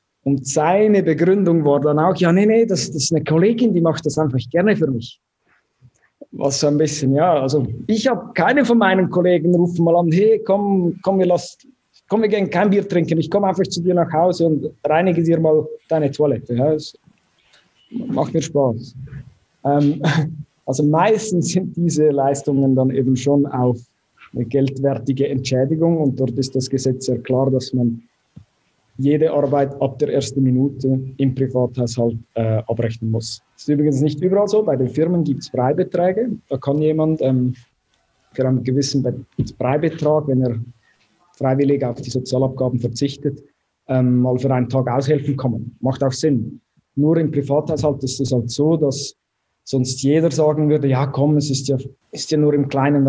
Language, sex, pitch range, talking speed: German, male, 130-160 Hz, 175 wpm